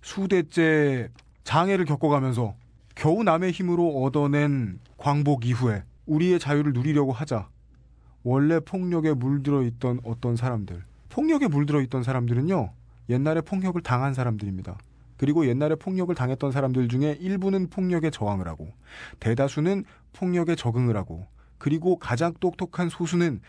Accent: native